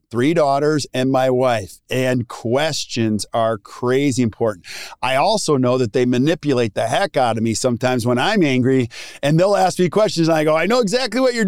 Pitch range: 120-170 Hz